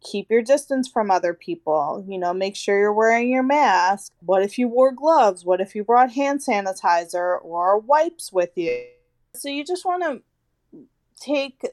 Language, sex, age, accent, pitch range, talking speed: English, female, 20-39, American, 185-225 Hz, 180 wpm